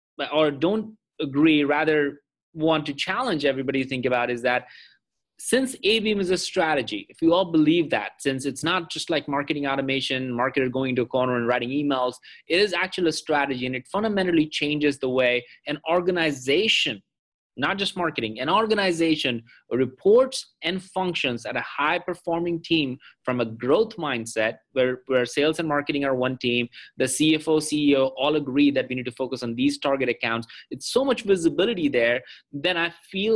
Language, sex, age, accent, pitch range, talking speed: English, male, 30-49, Indian, 135-180 Hz, 175 wpm